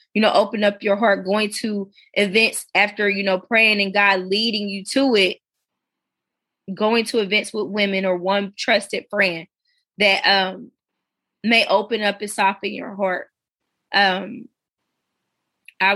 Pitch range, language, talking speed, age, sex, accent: 200-225 Hz, English, 145 wpm, 20-39, female, American